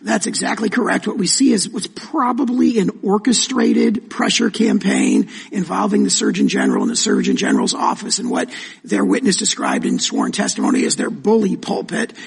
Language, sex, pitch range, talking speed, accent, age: English, male, 225-270 Hz, 165 wpm, American, 50-69